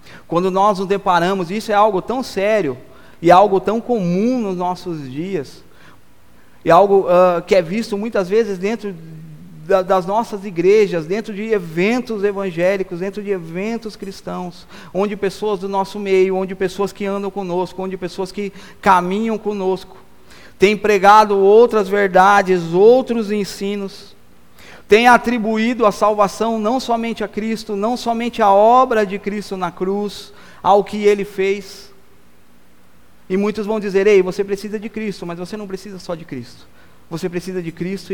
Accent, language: Brazilian, Portuguese